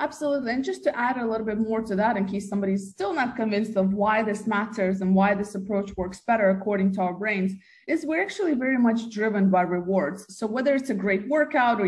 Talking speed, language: 230 wpm, English